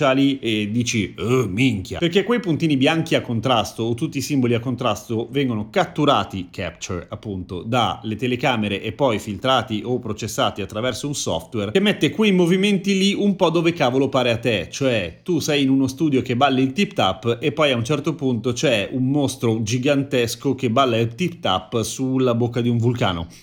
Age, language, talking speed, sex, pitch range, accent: 30-49, Italian, 185 wpm, male, 120-155 Hz, native